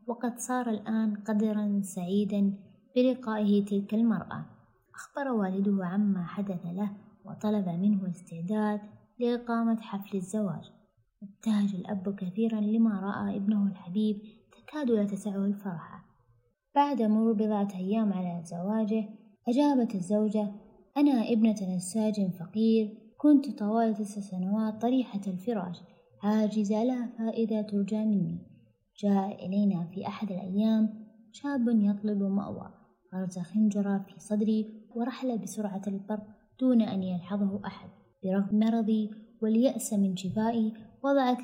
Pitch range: 195-220 Hz